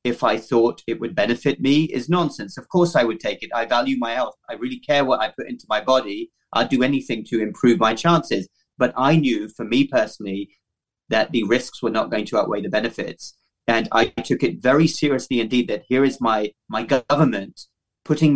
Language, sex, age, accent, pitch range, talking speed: English, male, 30-49, British, 115-145 Hz, 210 wpm